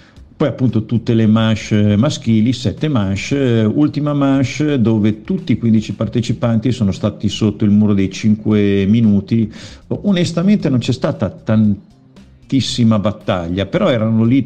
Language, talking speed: Italian, 135 wpm